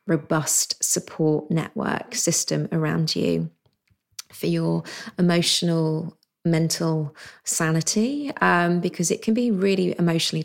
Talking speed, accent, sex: 105 wpm, British, female